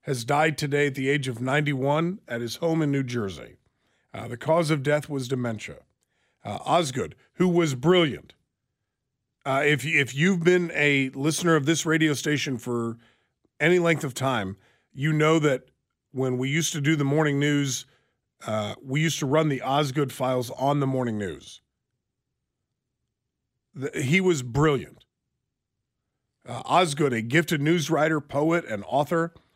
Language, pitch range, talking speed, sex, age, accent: English, 130-160 Hz, 155 wpm, male, 40-59, American